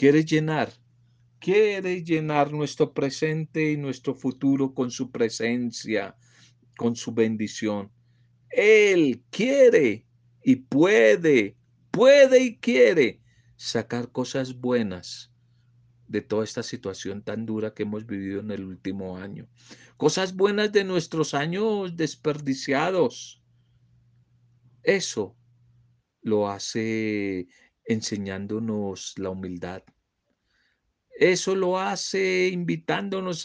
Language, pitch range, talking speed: Spanish, 105-155 Hz, 95 wpm